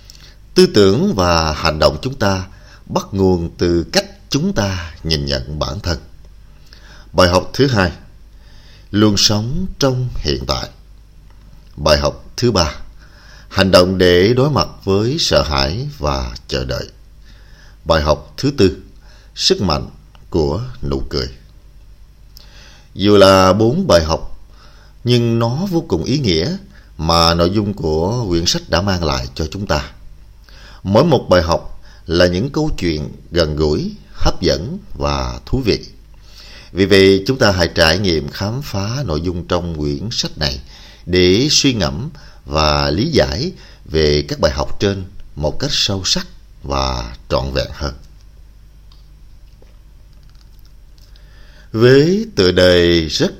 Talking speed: 140 wpm